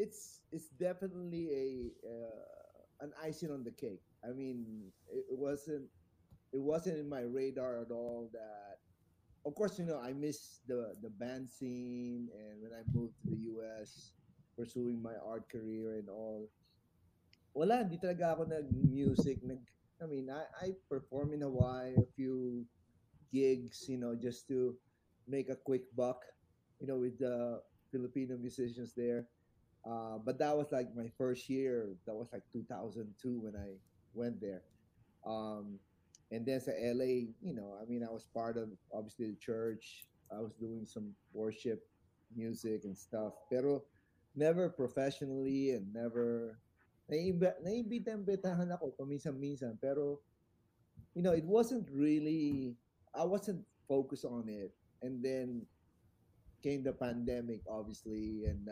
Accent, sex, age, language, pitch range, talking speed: native, male, 30-49, Filipino, 110-140 Hz, 140 wpm